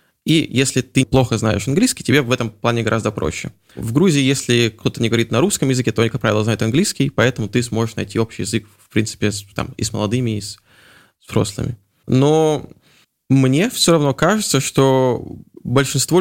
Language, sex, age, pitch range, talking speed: Russian, male, 20-39, 120-145 Hz, 180 wpm